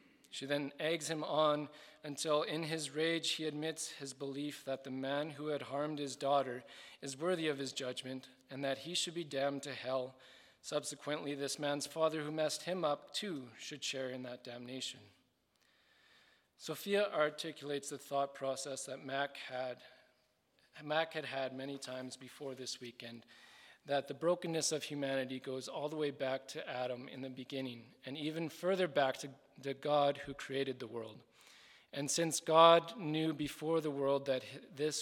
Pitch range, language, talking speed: 130-155 Hz, English, 170 wpm